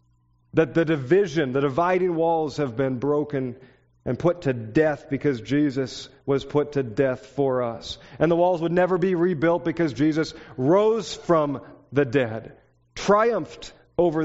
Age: 40-59